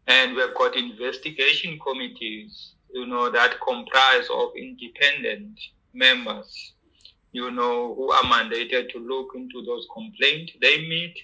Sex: male